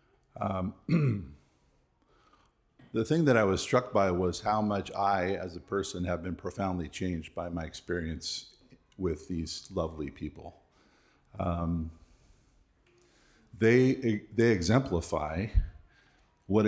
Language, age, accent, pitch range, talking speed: English, 50-69, American, 85-110 Hz, 110 wpm